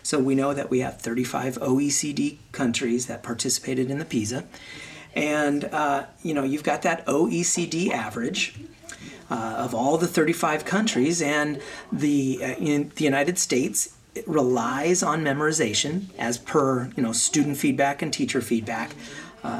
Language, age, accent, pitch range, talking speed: English, 40-59, American, 125-155 Hz, 155 wpm